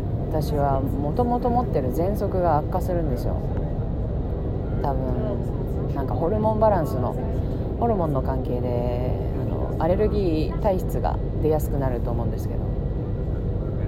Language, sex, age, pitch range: Japanese, female, 40-59, 105-125 Hz